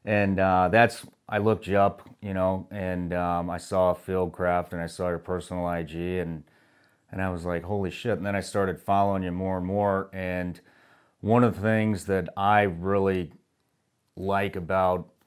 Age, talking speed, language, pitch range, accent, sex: 30-49, 190 wpm, English, 85-105 Hz, American, male